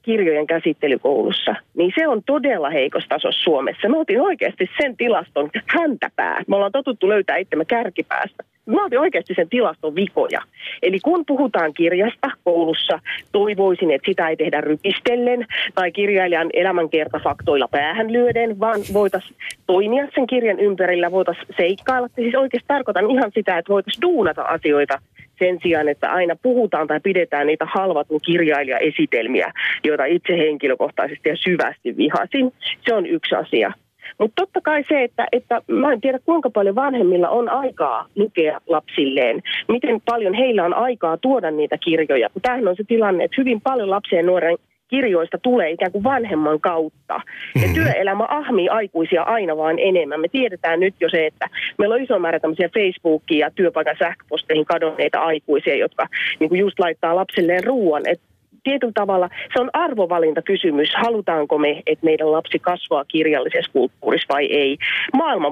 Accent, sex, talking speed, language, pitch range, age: native, female, 150 wpm, Finnish, 165-250 Hz, 30-49